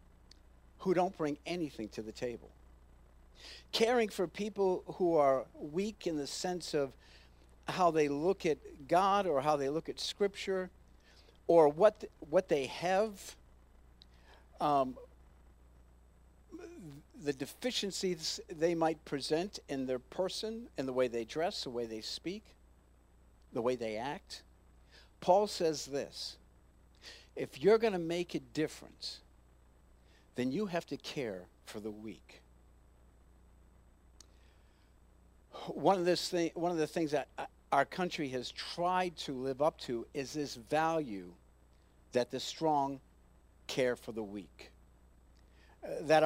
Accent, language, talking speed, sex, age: American, English, 130 wpm, male, 50-69